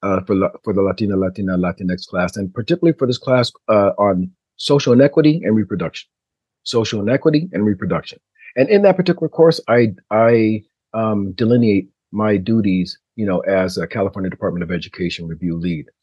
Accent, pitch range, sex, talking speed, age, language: American, 95-115 Hz, male, 170 wpm, 40-59, English